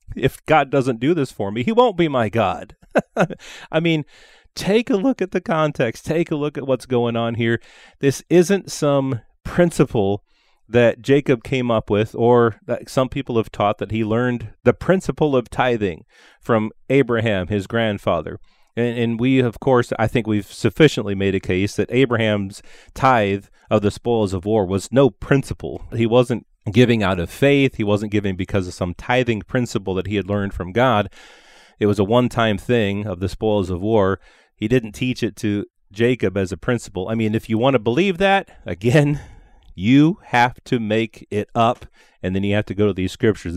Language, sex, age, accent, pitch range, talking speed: English, male, 30-49, American, 105-130 Hz, 190 wpm